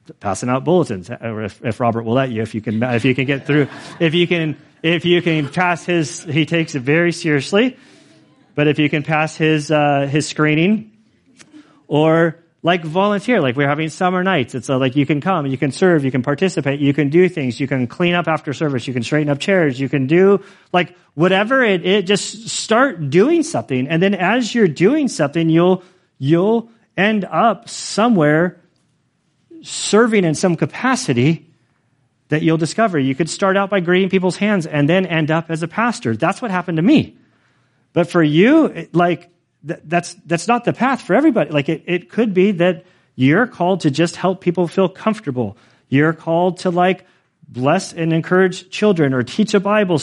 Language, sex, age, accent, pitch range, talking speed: English, male, 40-59, American, 150-190 Hz, 190 wpm